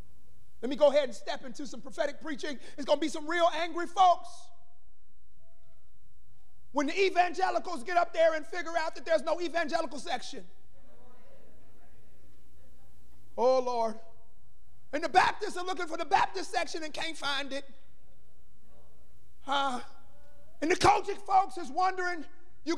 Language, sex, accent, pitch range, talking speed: English, male, American, 280-370 Hz, 140 wpm